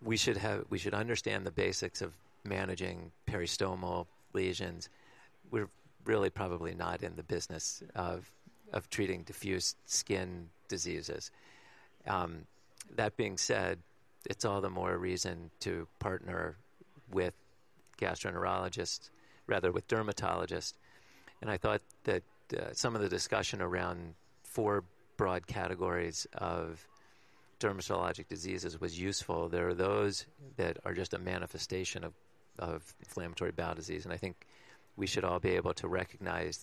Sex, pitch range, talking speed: male, 85-95 Hz, 135 wpm